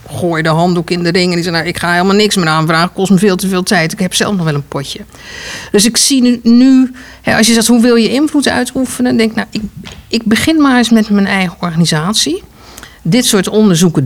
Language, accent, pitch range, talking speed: Dutch, Dutch, 175-225 Hz, 245 wpm